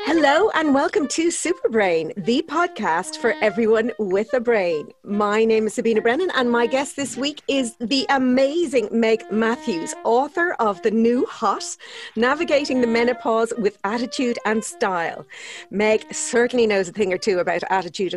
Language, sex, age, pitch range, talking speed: English, female, 40-59, 200-260 Hz, 160 wpm